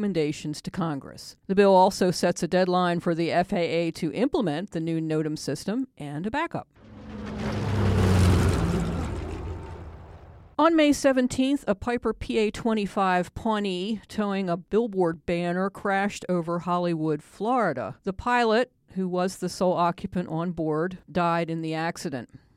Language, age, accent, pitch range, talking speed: English, 50-69, American, 165-215 Hz, 130 wpm